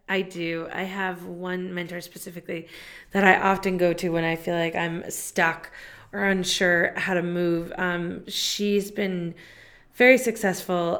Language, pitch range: English, 170-195 Hz